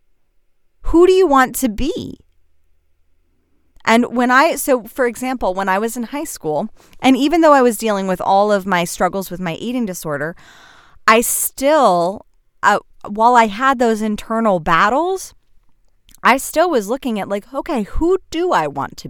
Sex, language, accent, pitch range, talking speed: female, English, American, 190-255 Hz, 170 wpm